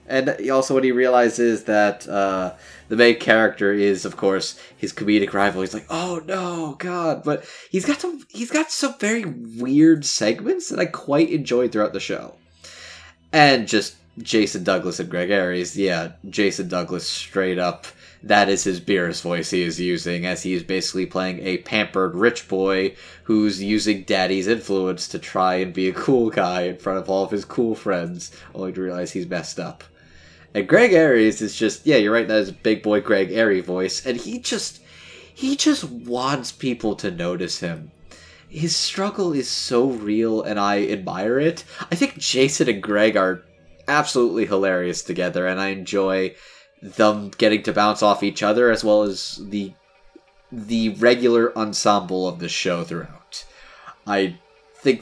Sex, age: male, 20-39